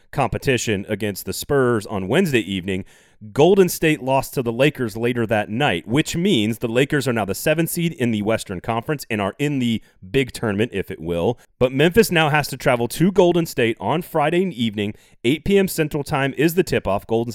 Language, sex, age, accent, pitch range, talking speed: English, male, 30-49, American, 105-145 Hz, 200 wpm